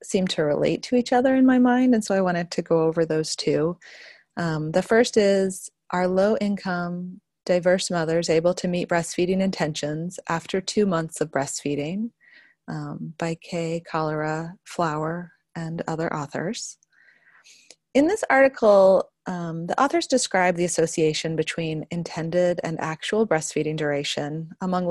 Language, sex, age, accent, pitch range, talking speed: English, female, 30-49, American, 160-190 Hz, 145 wpm